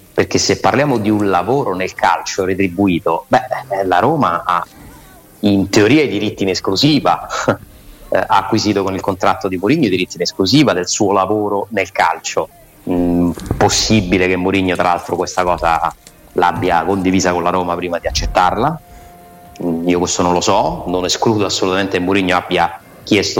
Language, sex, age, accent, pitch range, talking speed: Italian, male, 30-49, native, 90-105 Hz, 165 wpm